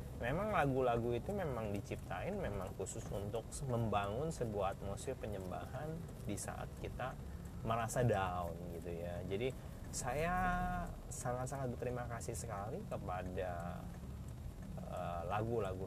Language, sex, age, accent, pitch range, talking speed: Indonesian, male, 30-49, native, 100-130 Hz, 105 wpm